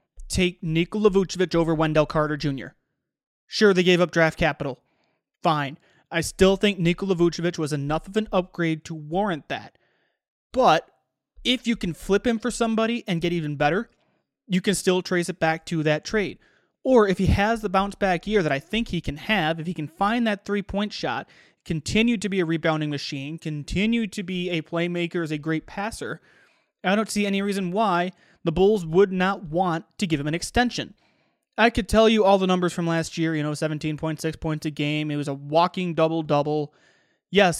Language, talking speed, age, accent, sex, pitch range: English, 195 wpm, 30-49, American, male, 160-200 Hz